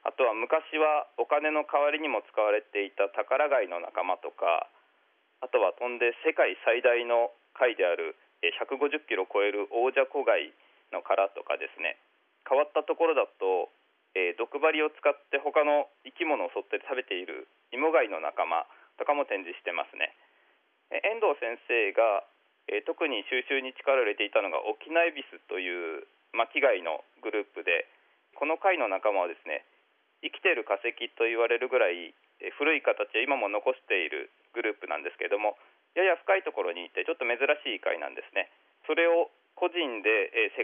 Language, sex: Japanese, male